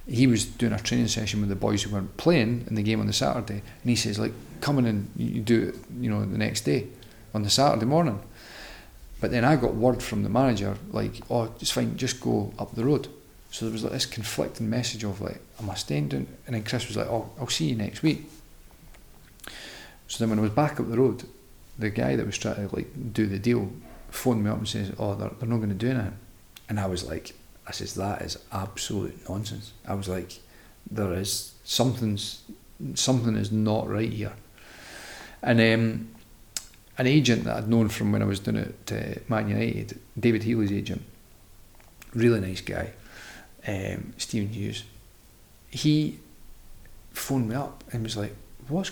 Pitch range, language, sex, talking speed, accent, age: 105-120 Hz, English, male, 205 wpm, British, 40-59